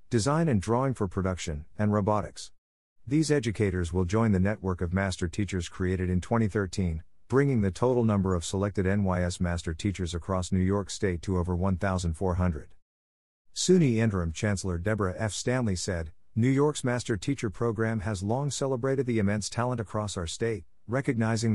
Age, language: 50-69, English